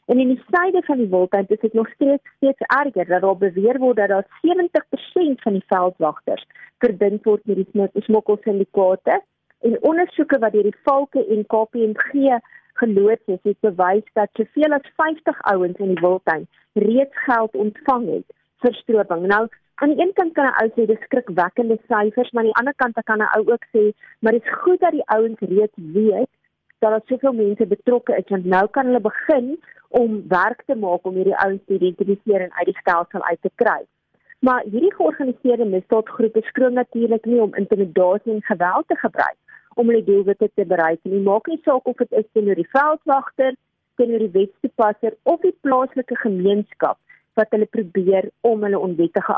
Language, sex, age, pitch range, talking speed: Dutch, female, 40-59, 200-255 Hz, 185 wpm